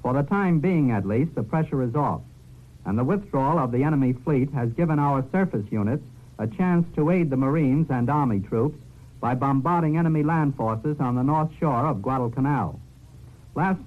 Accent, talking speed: American, 185 wpm